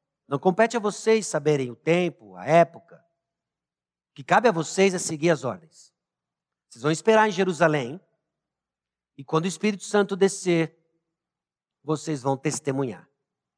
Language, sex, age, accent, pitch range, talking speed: Portuguese, male, 50-69, Brazilian, 150-215 Hz, 140 wpm